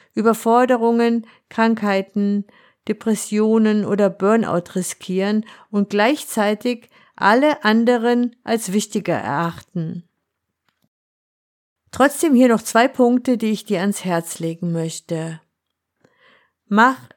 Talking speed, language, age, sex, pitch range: 90 wpm, German, 50-69, female, 190-235 Hz